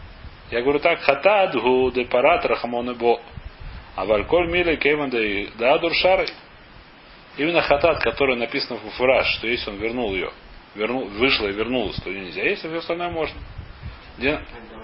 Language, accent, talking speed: Russian, native, 140 wpm